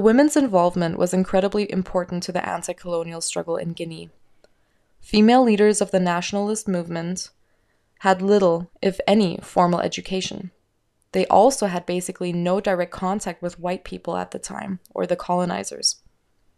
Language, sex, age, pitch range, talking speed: English, female, 20-39, 175-200 Hz, 140 wpm